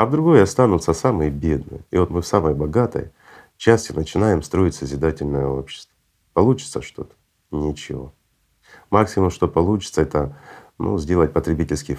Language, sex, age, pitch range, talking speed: Russian, male, 40-59, 75-95 Hz, 130 wpm